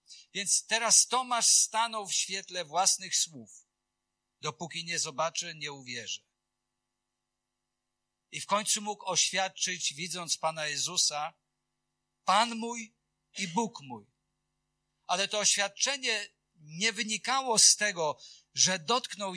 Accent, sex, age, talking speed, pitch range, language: native, male, 50-69, 110 wpm, 165-220 Hz, Polish